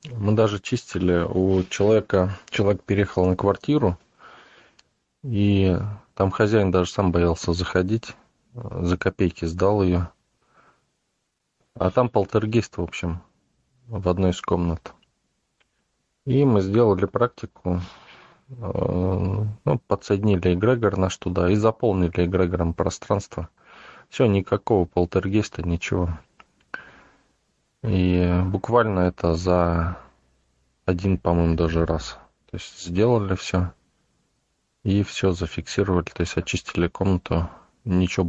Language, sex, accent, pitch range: Russian, male, native, 85-105 Hz